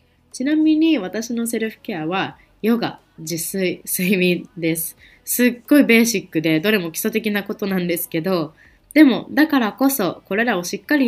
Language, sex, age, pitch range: Japanese, female, 20-39, 180-240 Hz